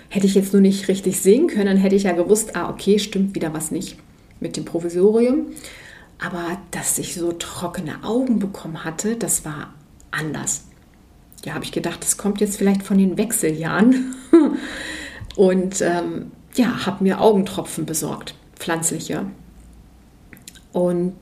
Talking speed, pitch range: 150 wpm, 185-245 Hz